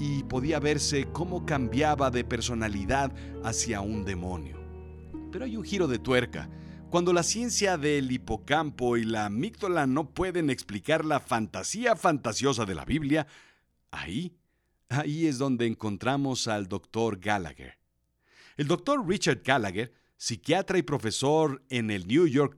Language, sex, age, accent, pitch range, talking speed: Spanish, male, 50-69, Mexican, 105-155 Hz, 140 wpm